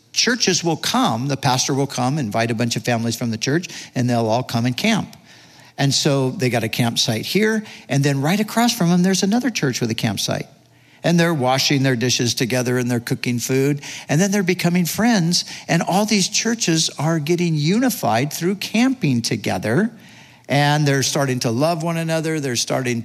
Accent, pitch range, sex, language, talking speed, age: American, 125-160 Hz, male, English, 195 wpm, 50-69